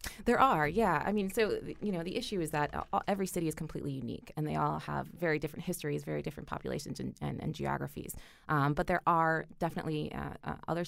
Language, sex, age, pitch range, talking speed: English, female, 20-39, 145-180 Hz, 220 wpm